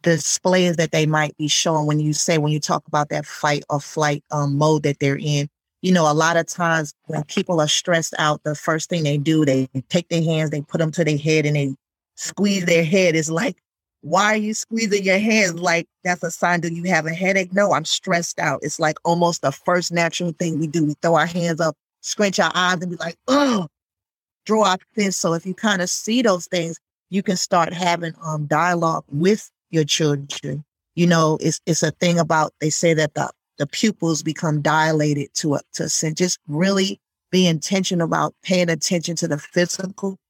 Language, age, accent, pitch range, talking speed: English, 30-49, American, 155-185 Hz, 215 wpm